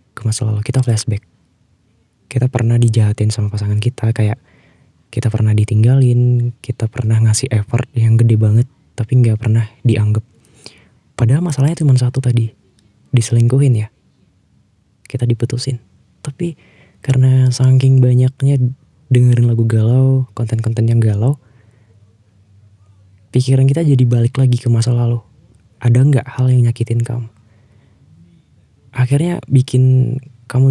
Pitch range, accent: 115-130 Hz, native